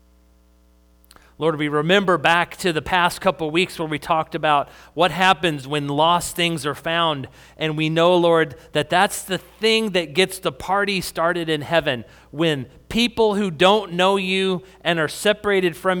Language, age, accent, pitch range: English, 40-59, American, 100-165 Hz